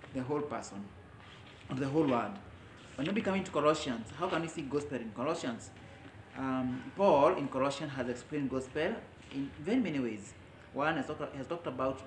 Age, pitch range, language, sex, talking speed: 30-49, 115-145 Hz, English, male, 165 wpm